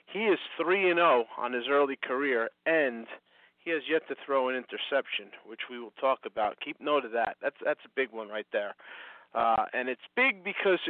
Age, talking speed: 40-59, 210 wpm